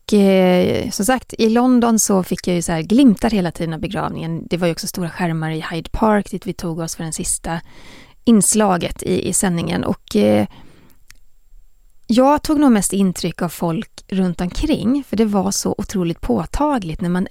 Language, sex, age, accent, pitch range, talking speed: English, female, 30-49, Swedish, 170-215 Hz, 195 wpm